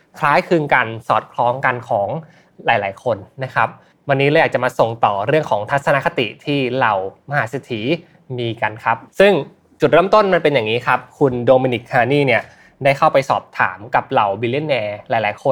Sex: male